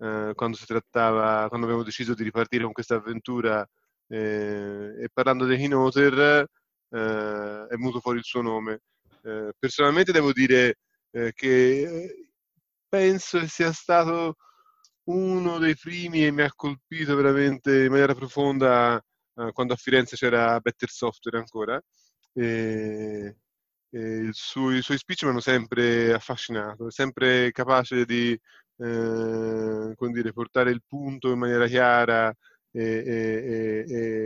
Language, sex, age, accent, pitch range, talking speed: Italian, male, 20-39, native, 110-135 Hz, 125 wpm